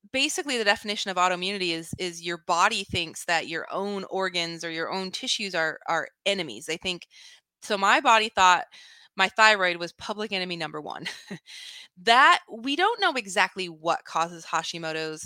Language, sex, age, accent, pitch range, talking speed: English, female, 20-39, American, 170-230 Hz, 165 wpm